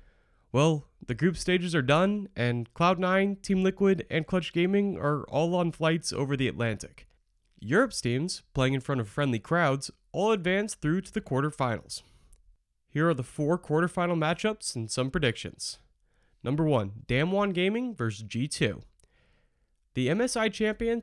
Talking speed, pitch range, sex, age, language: 150 wpm, 125-190 Hz, male, 30-49, English